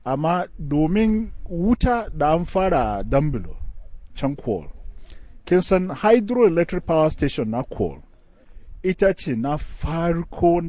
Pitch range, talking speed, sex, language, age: 95-155 Hz, 85 wpm, male, English, 40-59